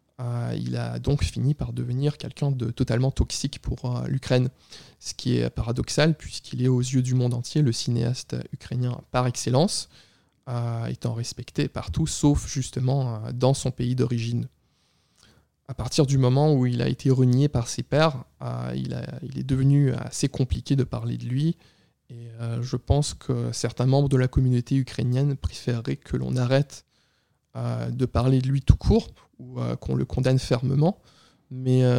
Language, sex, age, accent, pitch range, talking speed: French, male, 20-39, French, 120-135 Hz, 160 wpm